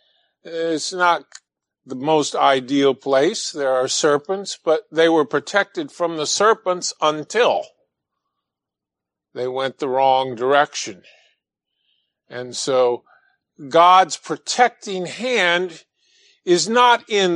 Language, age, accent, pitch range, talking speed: English, 50-69, American, 135-190 Hz, 105 wpm